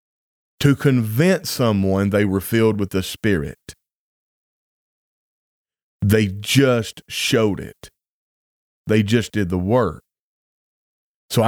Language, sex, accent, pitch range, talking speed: English, male, American, 105-140 Hz, 100 wpm